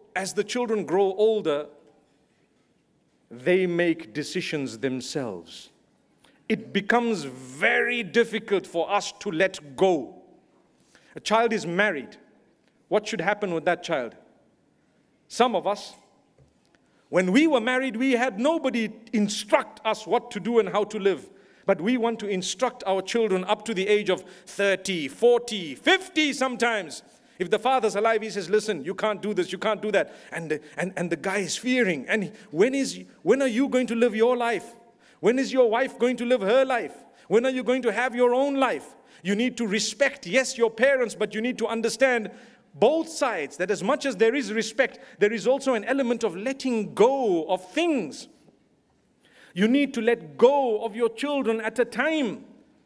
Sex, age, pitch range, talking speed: male, 50-69, 195-250 Hz, 175 wpm